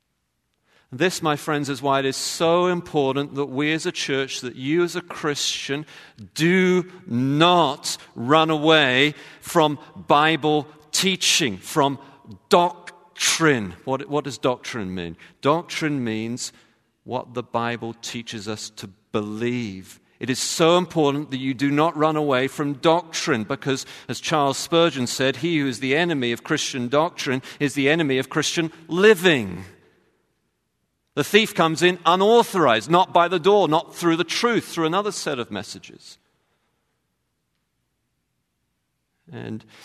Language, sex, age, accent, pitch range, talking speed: English, male, 40-59, British, 120-170 Hz, 140 wpm